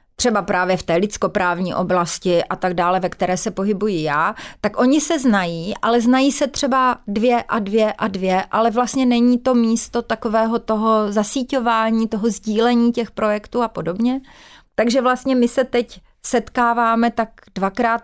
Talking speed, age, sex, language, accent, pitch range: 165 wpm, 30-49, female, Czech, native, 185-230 Hz